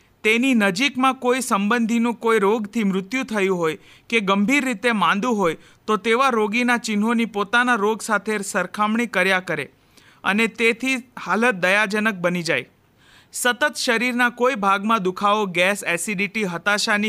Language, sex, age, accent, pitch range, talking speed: Gujarati, male, 40-59, native, 190-240 Hz, 160 wpm